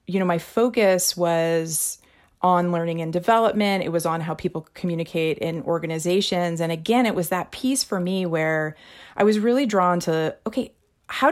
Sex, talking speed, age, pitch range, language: female, 175 wpm, 30-49, 170-200 Hz, English